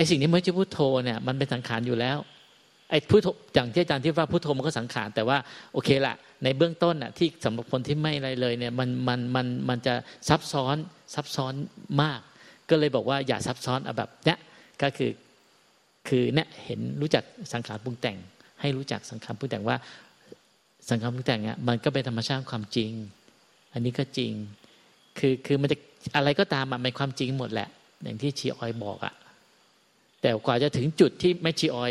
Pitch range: 125-155 Hz